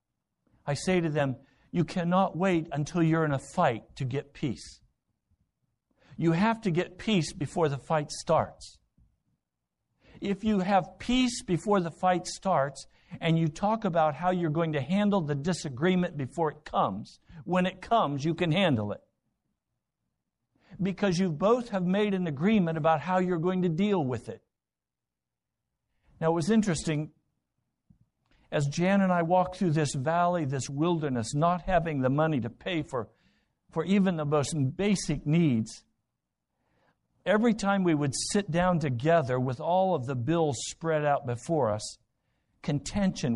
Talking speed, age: 155 wpm, 60-79